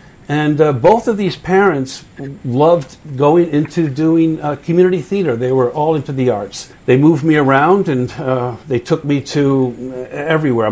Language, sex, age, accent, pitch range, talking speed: English, male, 60-79, American, 130-155 Hz, 170 wpm